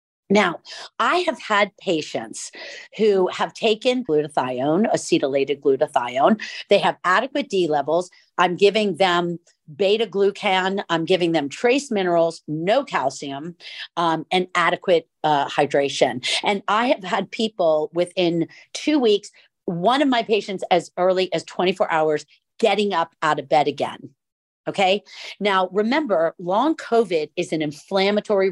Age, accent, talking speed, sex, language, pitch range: 50-69, American, 135 wpm, female, English, 160-210 Hz